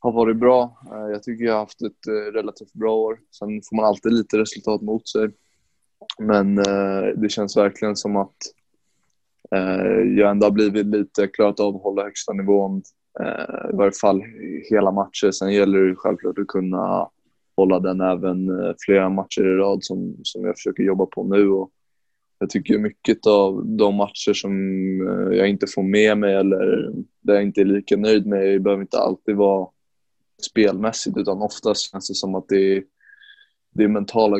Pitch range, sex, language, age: 95-105 Hz, male, Swedish, 20-39